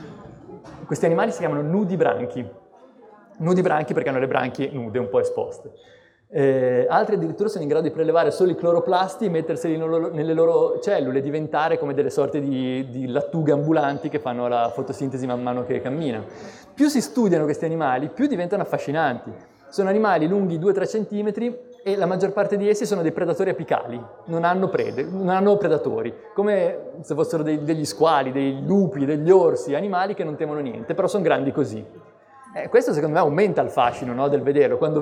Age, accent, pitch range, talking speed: 20-39, native, 130-200 Hz, 185 wpm